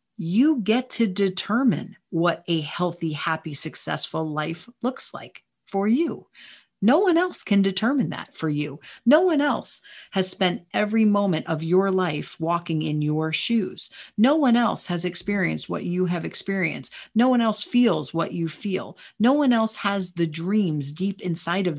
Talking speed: 170 wpm